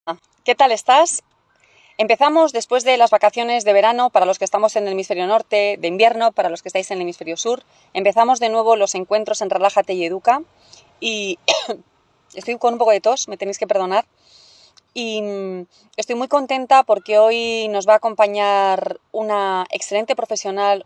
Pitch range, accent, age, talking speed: 190-230 Hz, Spanish, 30-49, 175 wpm